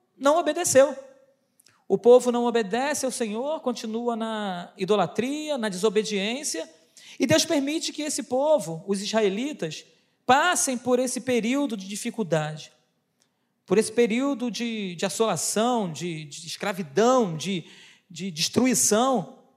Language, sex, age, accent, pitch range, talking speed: Portuguese, male, 40-59, Brazilian, 220-280 Hz, 120 wpm